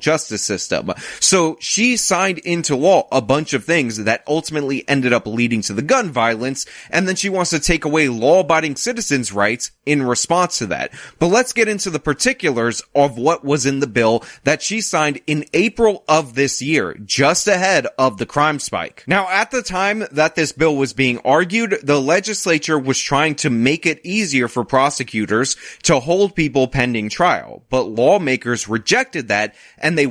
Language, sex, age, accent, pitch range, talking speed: English, male, 30-49, American, 120-160 Hz, 185 wpm